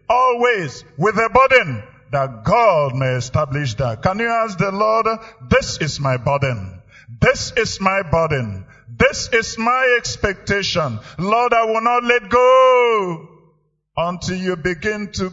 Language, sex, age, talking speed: English, male, 50-69, 140 wpm